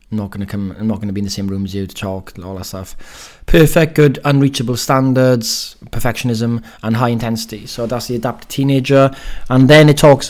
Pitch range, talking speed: 115-135 Hz, 200 wpm